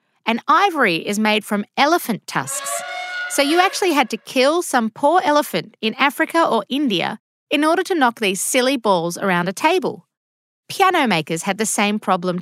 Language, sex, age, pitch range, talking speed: English, female, 30-49, 190-270 Hz, 175 wpm